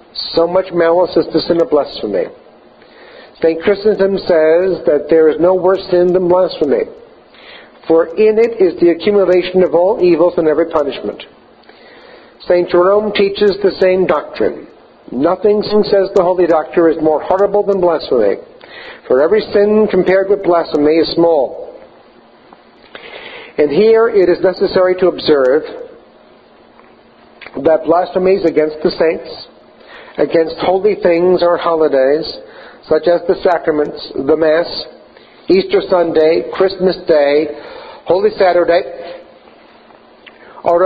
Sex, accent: male, American